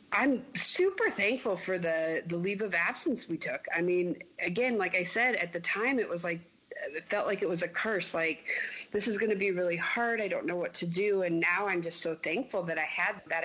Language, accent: English, American